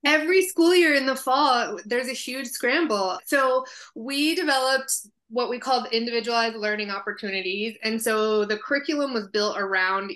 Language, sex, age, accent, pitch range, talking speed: English, female, 20-39, American, 195-235 Hz, 155 wpm